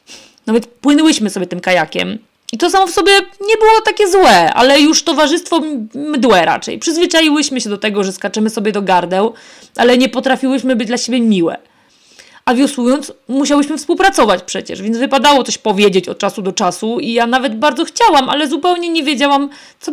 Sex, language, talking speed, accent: female, Polish, 175 wpm, native